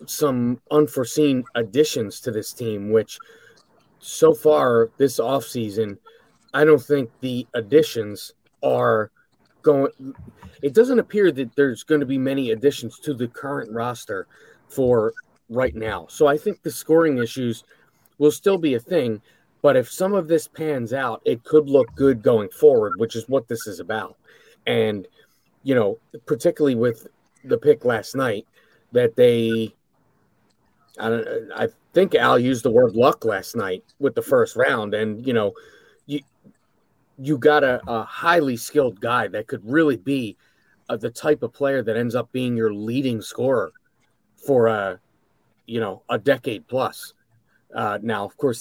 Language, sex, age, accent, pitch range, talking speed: English, male, 30-49, American, 115-165 Hz, 160 wpm